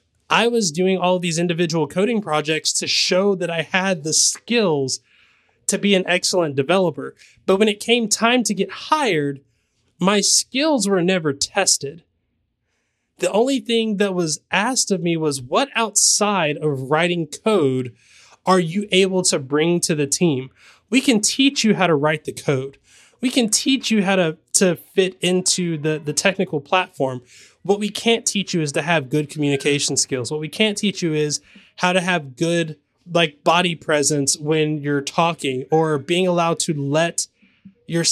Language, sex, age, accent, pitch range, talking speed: English, male, 20-39, American, 150-195 Hz, 175 wpm